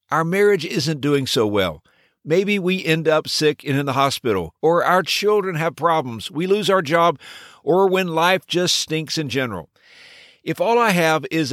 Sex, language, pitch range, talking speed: male, English, 115-170 Hz, 185 wpm